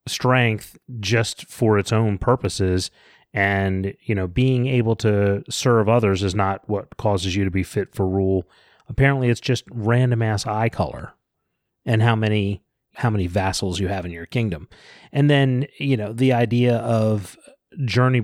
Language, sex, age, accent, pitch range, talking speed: English, male, 30-49, American, 100-120 Hz, 165 wpm